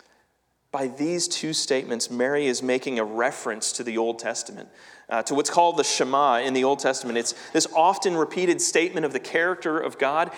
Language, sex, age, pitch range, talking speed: English, male, 30-49, 120-180 Hz, 190 wpm